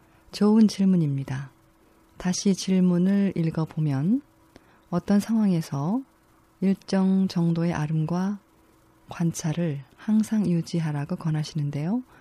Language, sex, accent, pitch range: Korean, female, native, 155-195 Hz